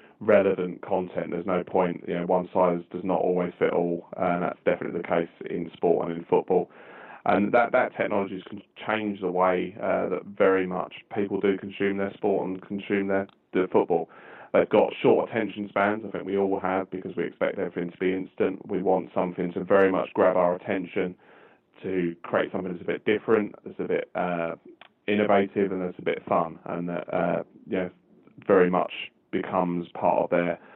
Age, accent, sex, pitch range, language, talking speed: 20-39, British, male, 85-95 Hz, English, 195 wpm